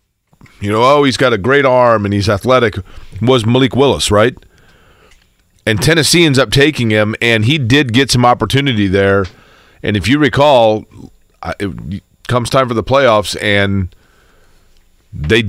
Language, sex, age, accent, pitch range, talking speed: English, male, 40-59, American, 105-135 Hz, 155 wpm